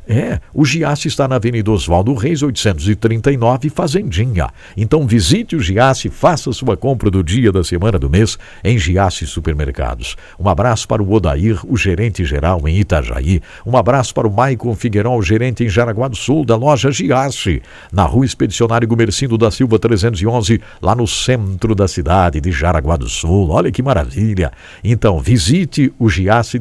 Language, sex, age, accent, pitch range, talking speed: English, male, 60-79, Brazilian, 90-125 Hz, 165 wpm